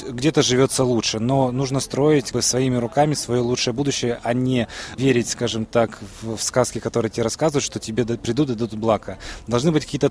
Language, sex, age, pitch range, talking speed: Russian, male, 20-39, 115-140 Hz, 180 wpm